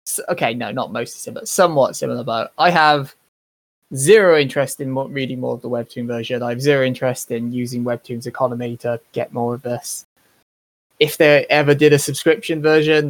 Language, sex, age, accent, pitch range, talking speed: English, male, 20-39, British, 120-150 Hz, 180 wpm